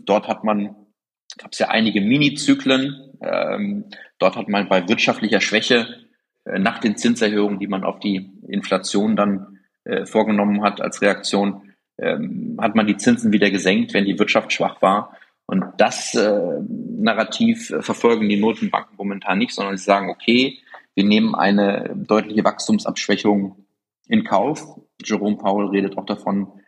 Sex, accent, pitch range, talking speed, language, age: male, German, 100-140 Hz, 150 wpm, German, 30-49